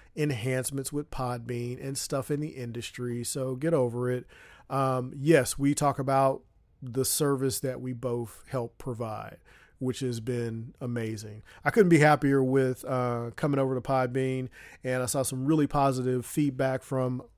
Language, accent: English, American